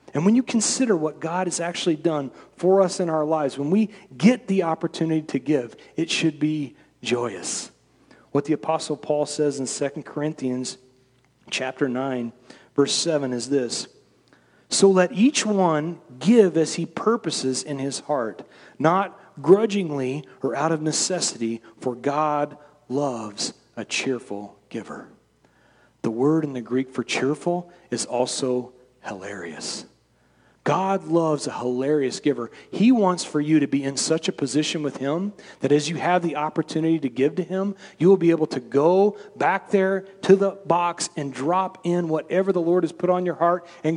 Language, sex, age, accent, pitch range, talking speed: English, male, 40-59, American, 140-195 Hz, 165 wpm